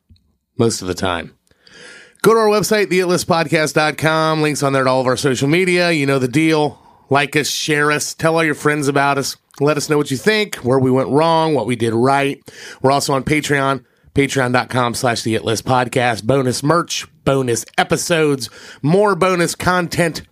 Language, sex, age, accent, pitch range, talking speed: English, male, 30-49, American, 125-175 Hz, 175 wpm